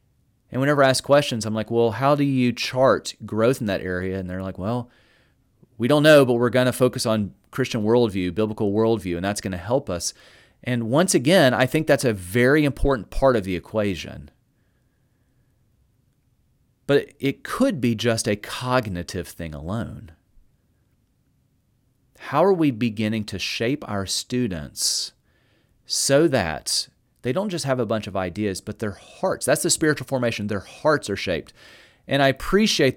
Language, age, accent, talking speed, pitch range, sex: English, 30-49, American, 170 wpm, 105-135 Hz, male